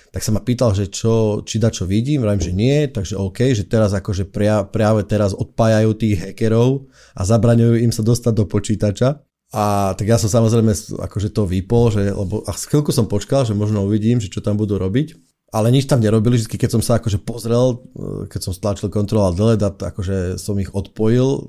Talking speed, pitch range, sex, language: 205 wpm, 100-120 Hz, male, Slovak